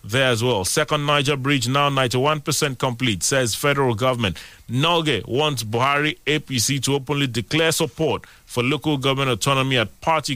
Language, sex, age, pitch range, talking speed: English, male, 30-49, 115-145 Hz, 150 wpm